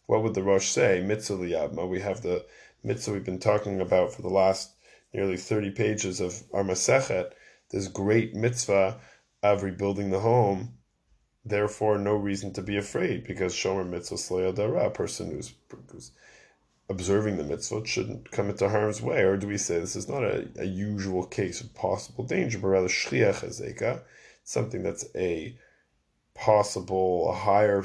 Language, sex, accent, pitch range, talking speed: English, male, American, 95-105 Hz, 155 wpm